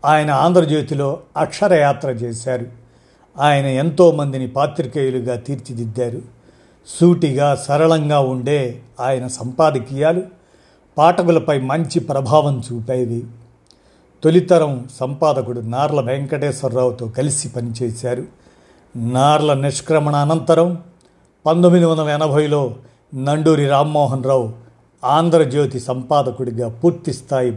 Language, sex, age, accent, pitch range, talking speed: Telugu, male, 50-69, native, 125-150 Hz, 70 wpm